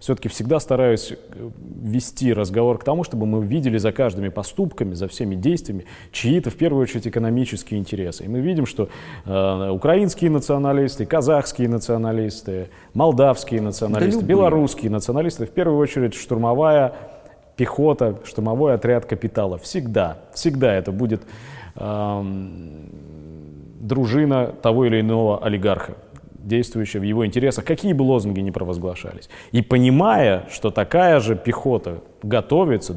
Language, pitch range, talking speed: Russian, 100-135 Hz, 125 wpm